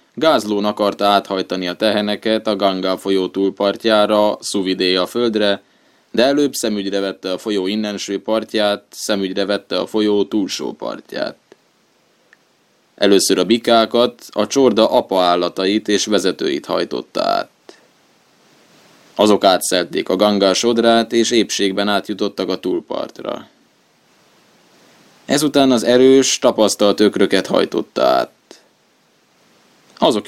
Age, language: 20-39, Hungarian